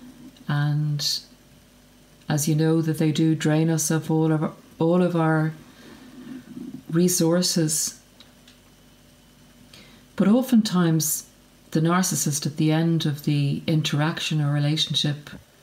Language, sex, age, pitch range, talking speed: English, female, 50-69, 145-170 Hz, 110 wpm